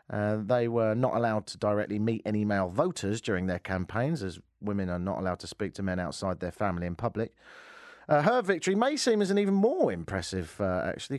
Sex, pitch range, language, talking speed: male, 105-160 Hz, English, 215 wpm